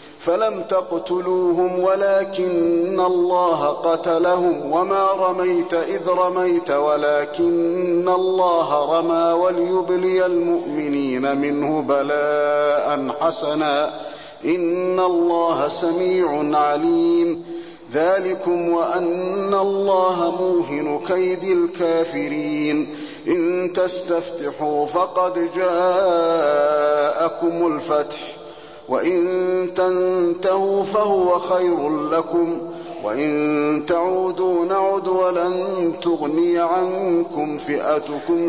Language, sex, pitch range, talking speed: Arabic, male, 150-180 Hz, 70 wpm